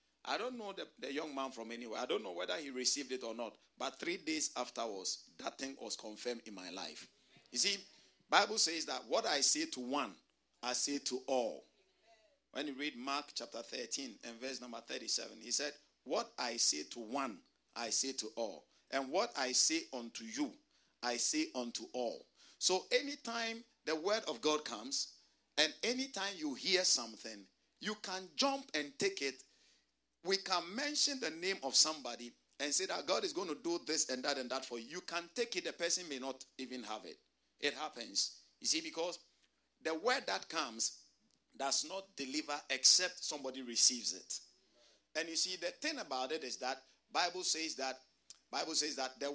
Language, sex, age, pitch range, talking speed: English, male, 50-69, 130-210 Hz, 190 wpm